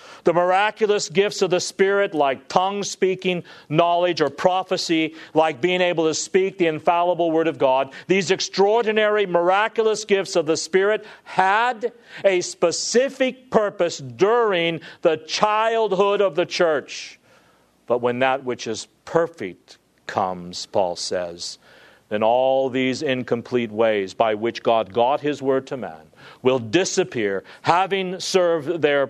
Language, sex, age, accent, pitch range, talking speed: English, male, 50-69, American, 125-190 Hz, 135 wpm